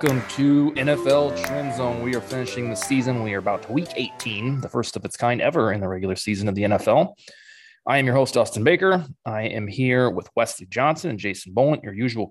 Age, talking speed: 20-39, 225 wpm